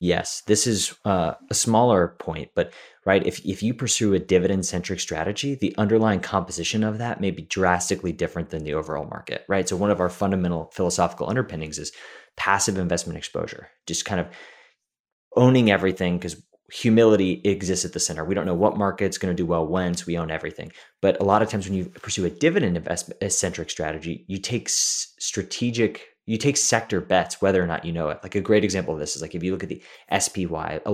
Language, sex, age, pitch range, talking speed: English, male, 20-39, 85-105 Hz, 210 wpm